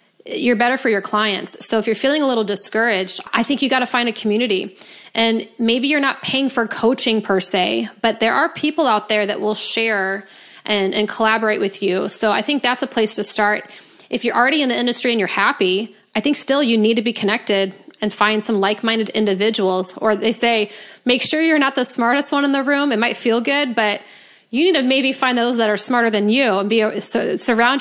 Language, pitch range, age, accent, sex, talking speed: English, 210-250 Hz, 20-39, American, female, 225 wpm